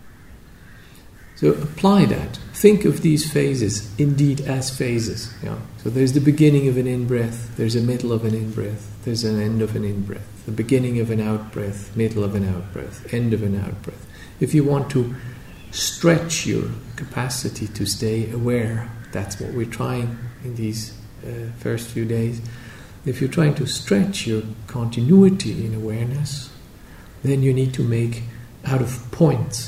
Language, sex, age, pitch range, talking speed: English, male, 50-69, 110-140 Hz, 160 wpm